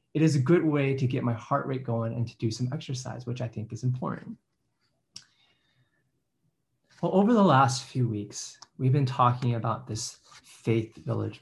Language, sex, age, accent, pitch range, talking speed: English, male, 20-39, American, 120-150 Hz, 180 wpm